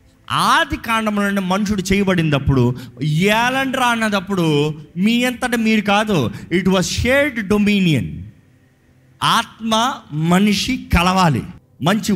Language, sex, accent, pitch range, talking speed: Telugu, male, native, 135-205 Hz, 90 wpm